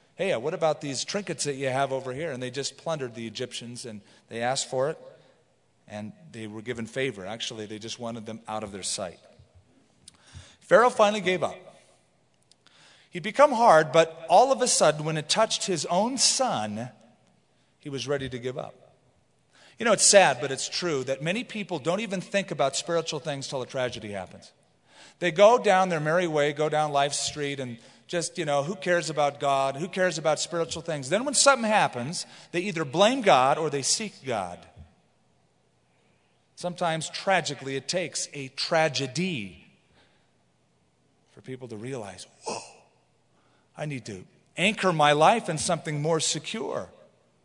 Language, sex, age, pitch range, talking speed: English, male, 40-59, 125-175 Hz, 170 wpm